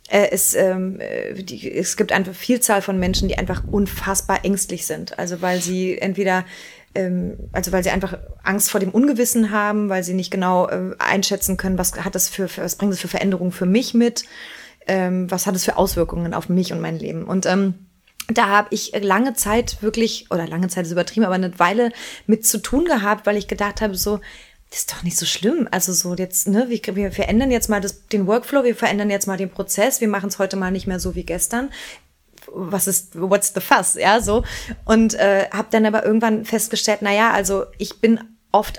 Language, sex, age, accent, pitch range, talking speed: German, female, 20-39, German, 190-225 Hz, 210 wpm